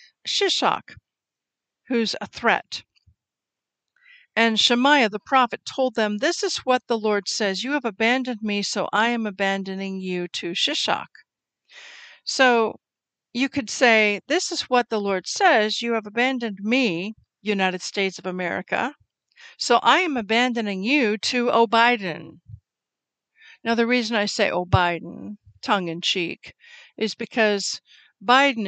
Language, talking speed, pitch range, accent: English, 130 wpm, 185-245 Hz, American